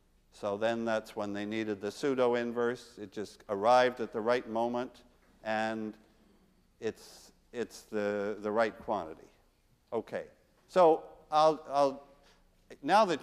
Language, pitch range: English, 115-175 Hz